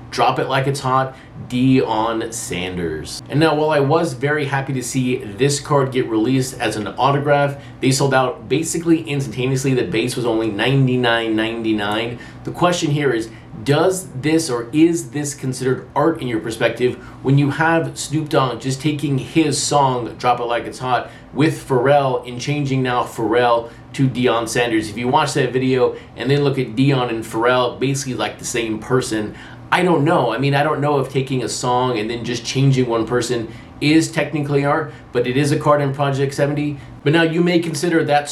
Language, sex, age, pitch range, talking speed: English, male, 30-49, 120-145 Hz, 190 wpm